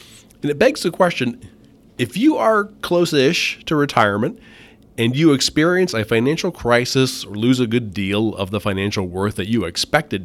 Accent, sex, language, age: American, male, English, 30-49